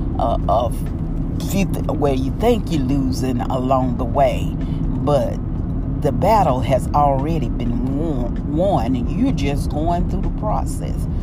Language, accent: English, American